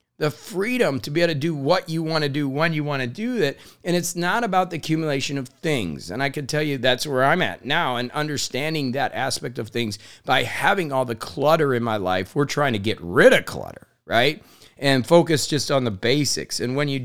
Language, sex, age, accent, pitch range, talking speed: English, male, 40-59, American, 125-170 Hz, 235 wpm